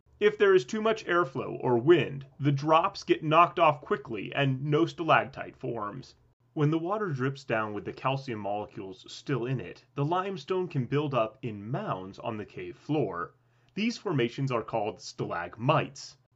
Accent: American